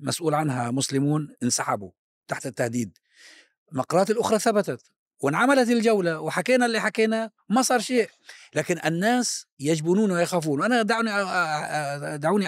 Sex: male